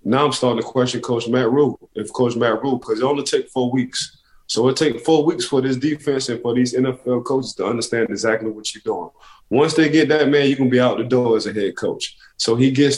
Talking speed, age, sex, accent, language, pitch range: 260 wpm, 20-39, male, American, English, 120-140 Hz